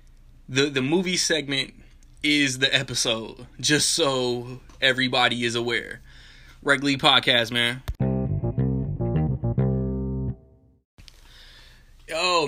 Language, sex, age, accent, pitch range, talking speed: English, male, 20-39, American, 120-130 Hz, 75 wpm